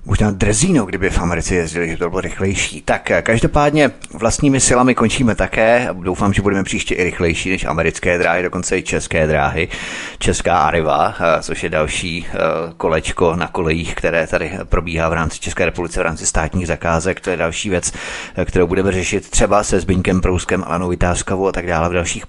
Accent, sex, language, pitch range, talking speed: native, male, Czech, 90-105 Hz, 185 wpm